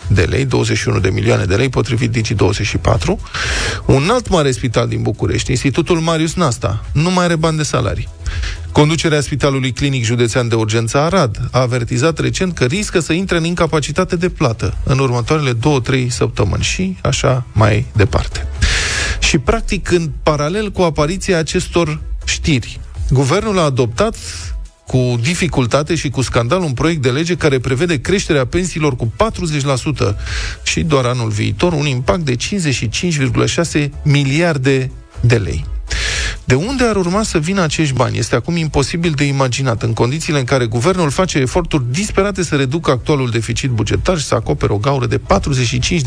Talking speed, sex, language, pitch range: 155 wpm, male, Romanian, 115-165 Hz